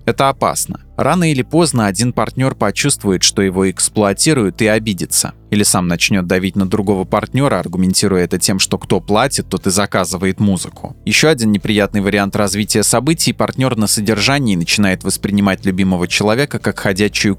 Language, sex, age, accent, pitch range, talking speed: Russian, male, 20-39, native, 95-120 Hz, 155 wpm